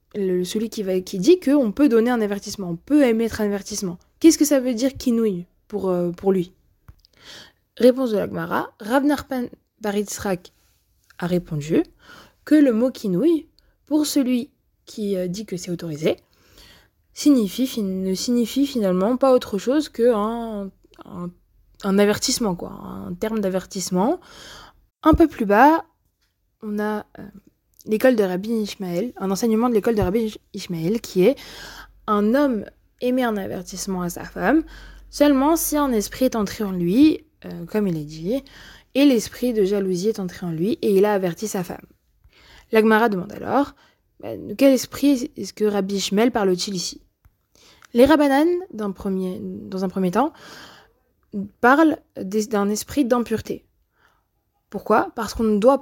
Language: French